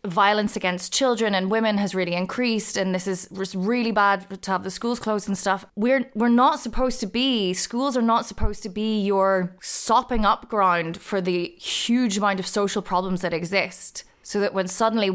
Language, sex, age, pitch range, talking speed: English, female, 20-39, 175-215 Hz, 195 wpm